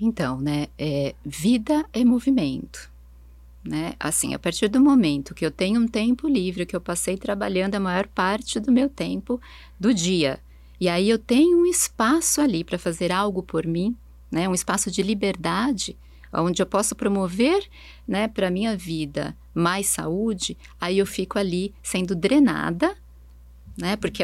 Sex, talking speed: female, 160 wpm